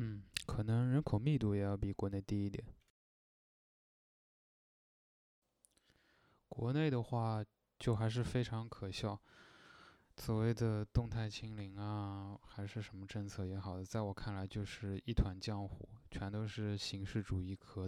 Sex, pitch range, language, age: male, 95-110 Hz, Chinese, 20-39